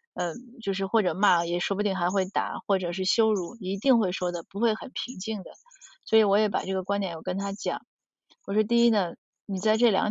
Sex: female